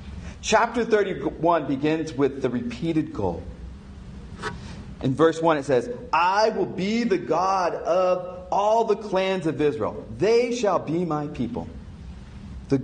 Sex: male